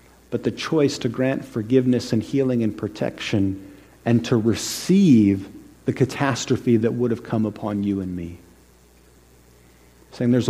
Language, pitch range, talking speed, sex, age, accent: English, 95-130 Hz, 145 wpm, male, 40-59, American